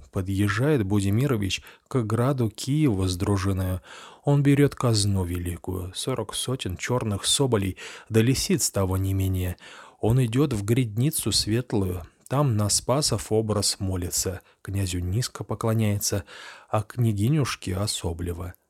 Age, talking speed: 20-39, 115 wpm